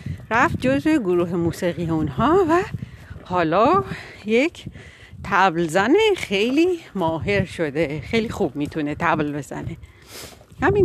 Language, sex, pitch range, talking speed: Persian, female, 180-255 Hz, 100 wpm